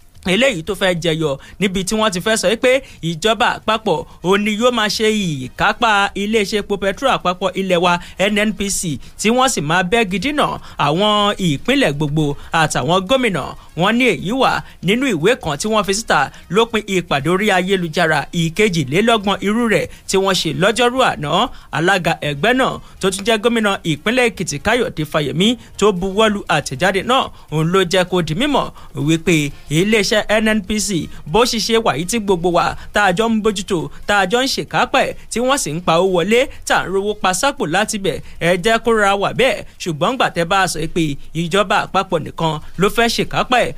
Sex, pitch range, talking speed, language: male, 170-220 Hz, 165 wpm, English